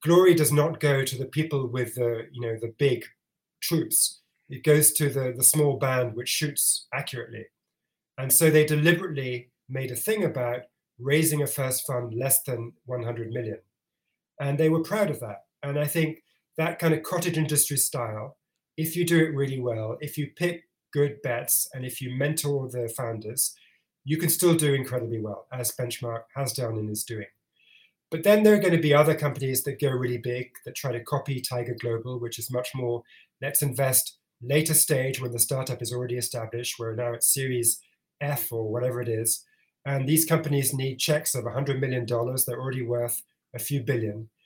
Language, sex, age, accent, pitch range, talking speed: English, male, 30-49, British, 120-155 Hz, 190 wpm